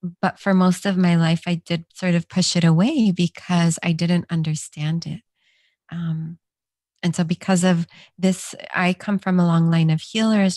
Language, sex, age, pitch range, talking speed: English, female, 30-49, 165-185 Hz, 180 wpm